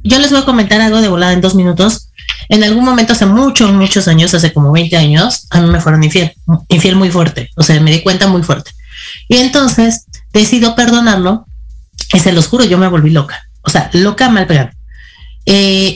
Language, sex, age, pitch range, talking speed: Spanish, female, 30-49, 165-220 Hz, 205 wpm